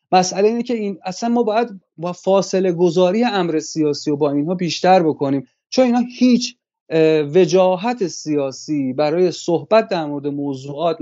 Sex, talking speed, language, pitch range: male, 145 wpm, Persian, 140-180 Hz